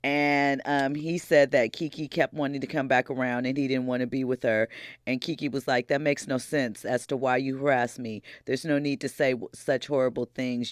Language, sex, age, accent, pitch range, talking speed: English, female, 40-59, American, 120-140 Hz, 235 wpm